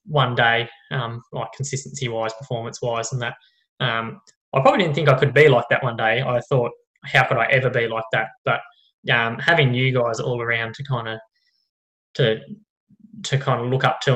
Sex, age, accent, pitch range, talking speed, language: male, 10-29, Australian, 120-140 Hz, 195 wpm, English